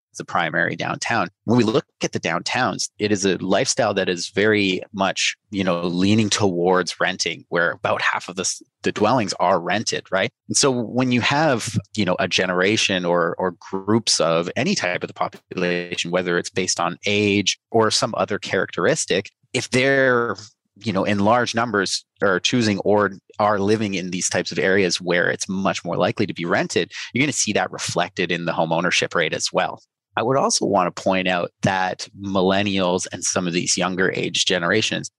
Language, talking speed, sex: English, 195 wpm, male